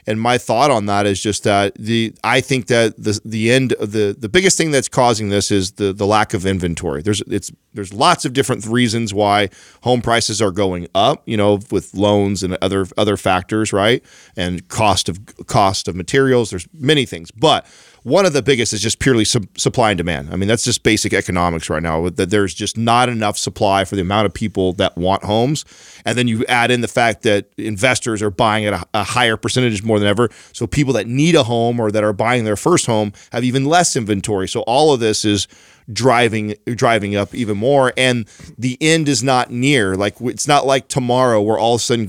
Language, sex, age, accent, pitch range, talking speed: English, male, 40-59, American, 100-125 Hz, 220 wpm